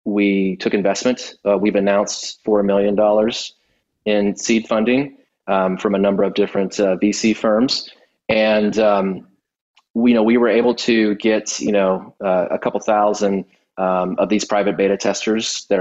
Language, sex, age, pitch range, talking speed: English, male, 30-49, 100-120 Hz, 165 wpm